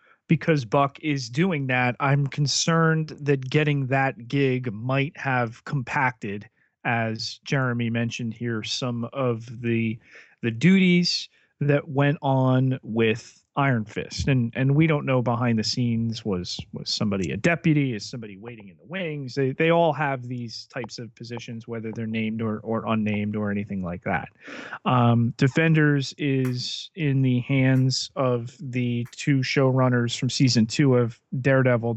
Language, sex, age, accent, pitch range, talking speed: English, male, 30-49, American, 115-140 Hz, 150 wpm